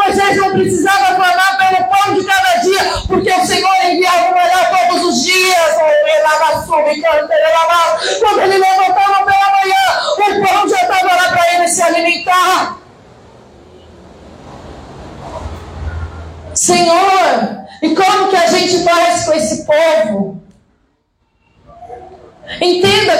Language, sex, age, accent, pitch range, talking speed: Portuguese, female, 40-59, Brazilian, 340-405 Hz, 125 wpm